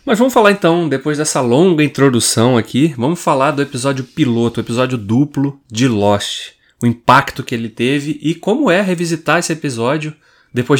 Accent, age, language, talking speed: Brazilian, 20-39, Portuguese, 170 wpm